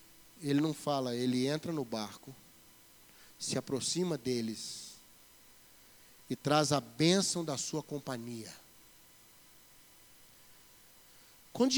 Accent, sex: Brazilian, male